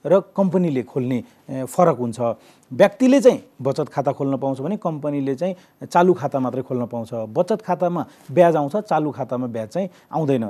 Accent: Indian